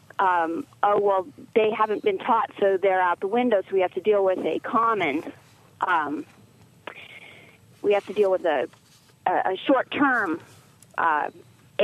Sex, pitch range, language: female, 195-265 Hz, English